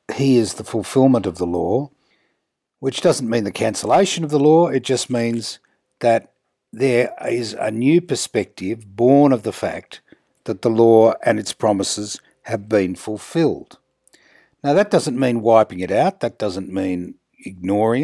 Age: 60-79